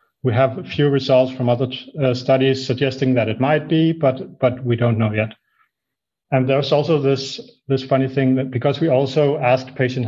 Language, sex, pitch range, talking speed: English, male, 120-145 Hz, 195 wpm